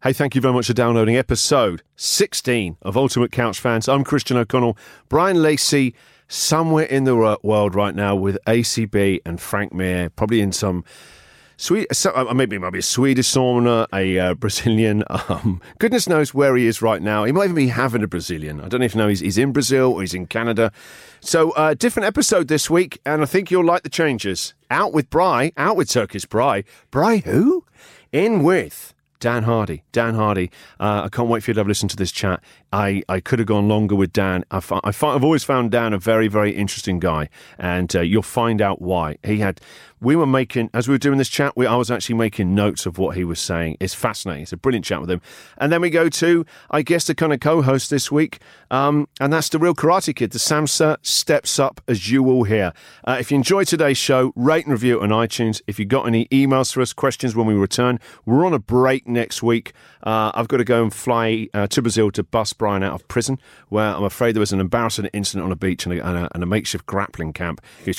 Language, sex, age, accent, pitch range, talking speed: English, male, 40-59, British, 100-135 Hz, 230 wpm